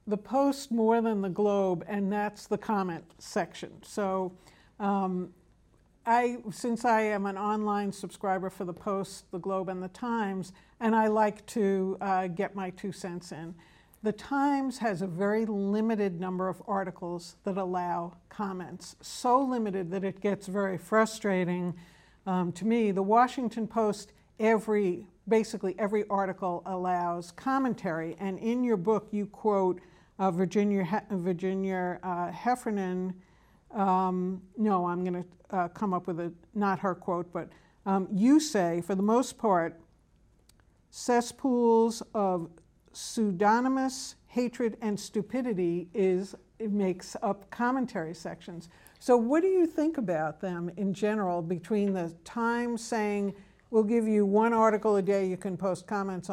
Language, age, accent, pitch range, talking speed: English, 60-79, American, 185-220 Hz, 145 wpm